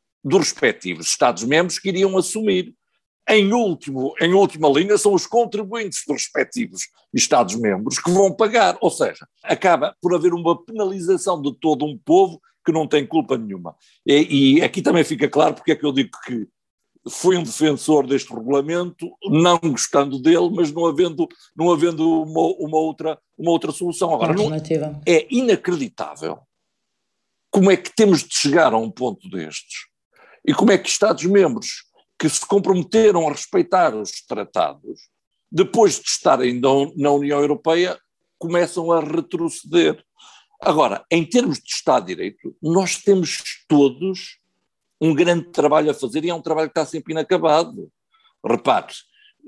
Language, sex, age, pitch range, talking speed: Portuguese, male, 50-69, 150-200 Hz, 145 wpm